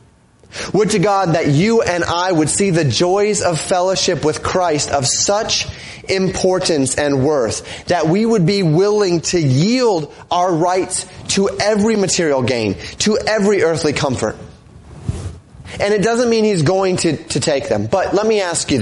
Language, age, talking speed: English, 30-49, 165 wpm